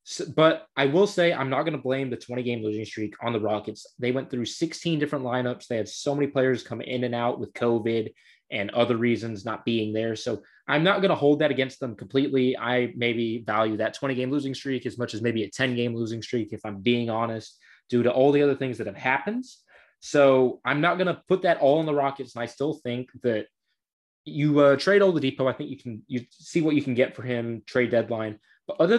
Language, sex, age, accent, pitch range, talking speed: English, male, 20-39, American, 115-140 Hz, 245 wpm